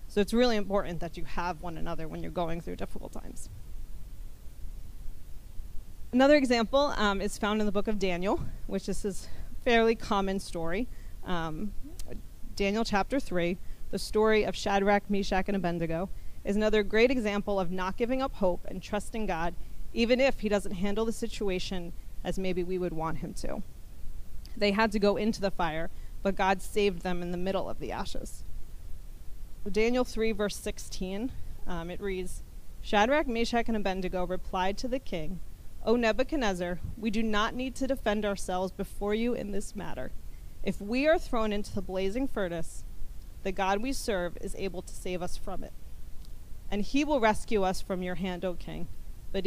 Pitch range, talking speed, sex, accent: 180-220 Hz, 175 wpm, female, American